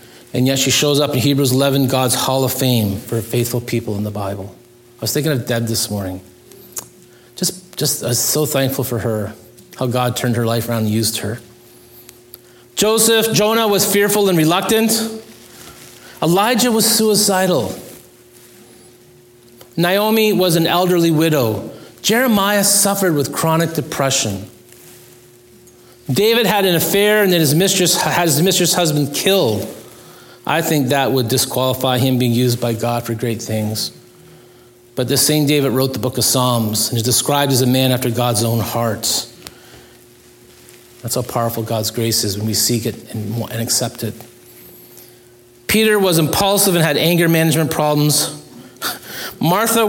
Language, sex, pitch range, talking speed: English, male, 120-175 Hz, 155 wpm